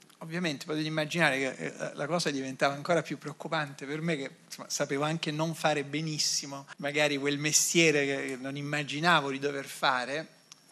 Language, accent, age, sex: Italian, native, 40-59, male